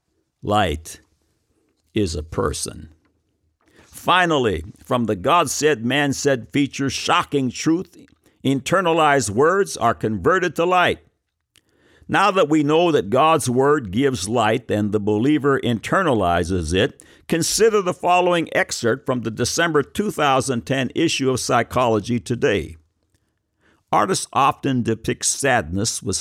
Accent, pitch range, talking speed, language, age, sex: American, 105-145 Hz, 115 wpm, English, 60-79, male